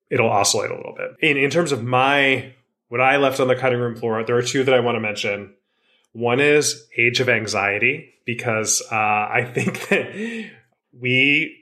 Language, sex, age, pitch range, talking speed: English, male, 20-39, 115-145 Hz, 190 wpm